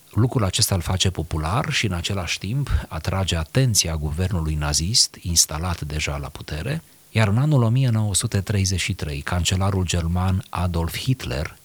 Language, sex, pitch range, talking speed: Romanian, male, 80-105 Hz, 130 wpm